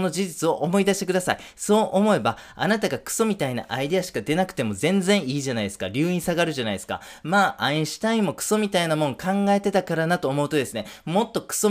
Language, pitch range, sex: Japanese, 125-175 Hz, male